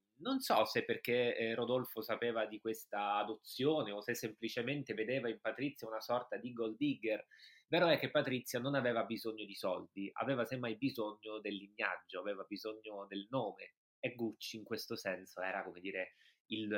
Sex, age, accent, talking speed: male, 20-39, native, 170 wpm